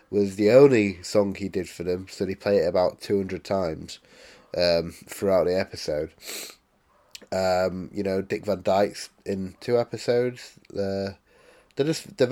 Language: English